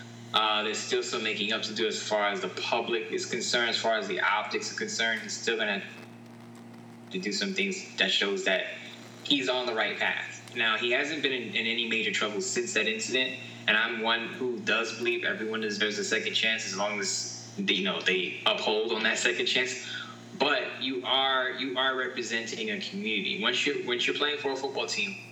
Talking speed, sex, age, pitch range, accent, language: 210 wpm, male, 20-39, 115-185 Hz, American, English